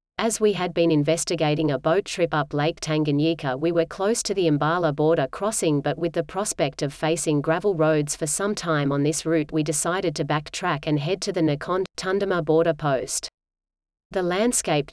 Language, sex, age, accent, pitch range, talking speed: English, female, 40-59, Australian, 150-185 Hz, 190 wpm